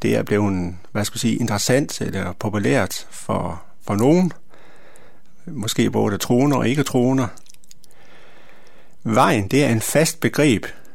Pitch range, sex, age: 110-140 Hz, male, 60-79